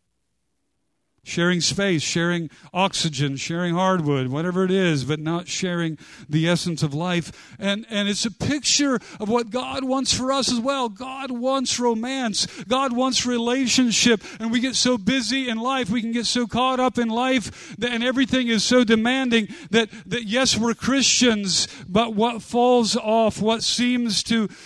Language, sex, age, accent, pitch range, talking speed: English, male, 50-69, American, 160-235 Hz, 160 wpm